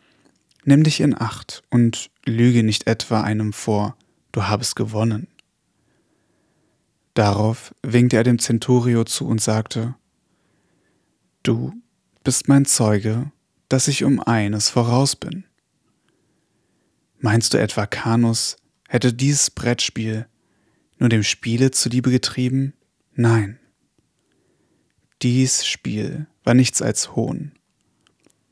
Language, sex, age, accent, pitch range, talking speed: German, male, 30-49, German, 110-130 Hz, 105 wpm